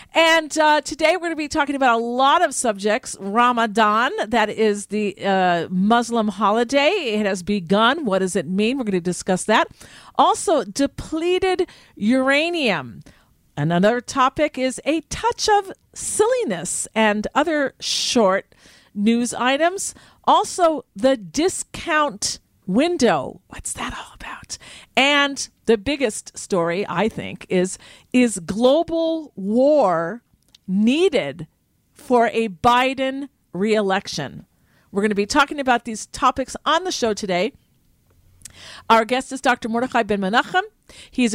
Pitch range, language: 205-285 Hz, English